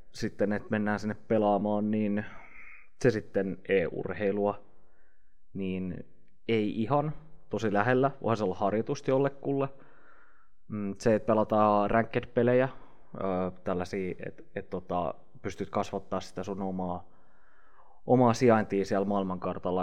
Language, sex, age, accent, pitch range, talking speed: Finnish, male, 20-39, native, 100-125 Hz, 105 wpm